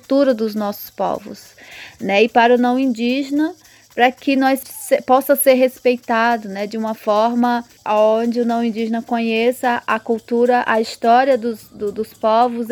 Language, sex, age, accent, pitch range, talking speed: Portuguese, female, 20-39, Brazilian, 210-240 Hz, 160 wpm